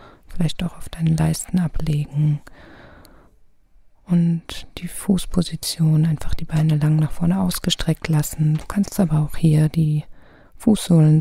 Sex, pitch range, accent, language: female, 150-165 Hz, German, German